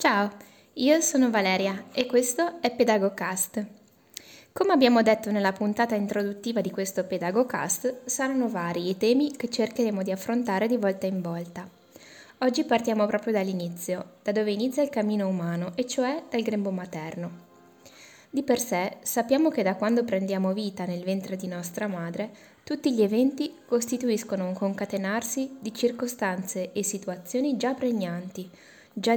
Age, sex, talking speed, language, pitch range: 20-39, female, 145 wpm, Italian, 190-245 Hz